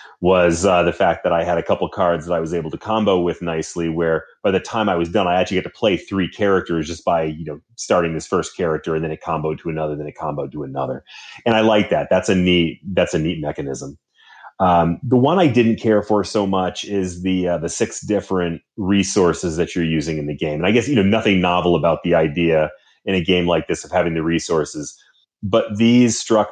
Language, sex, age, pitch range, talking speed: English, male, 30-49, 85-100 Hz, 240 wpm